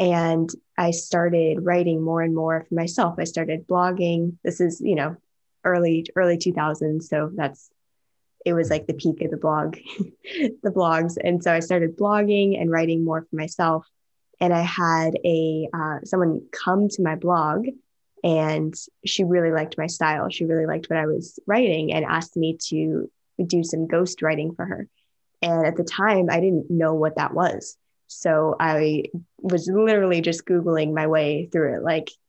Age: 10-29